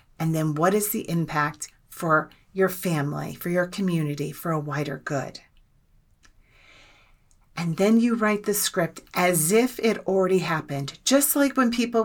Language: English